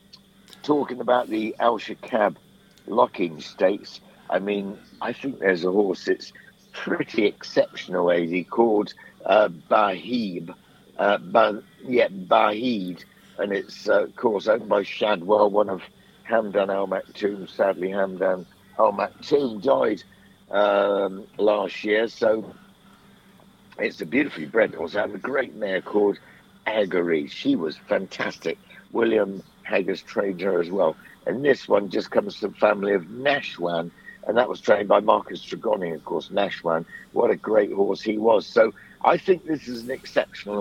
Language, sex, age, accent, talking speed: English, male, 60-79, British, 145 wpm